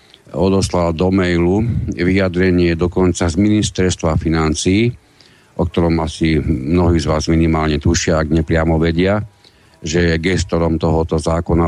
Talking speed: 125 wpm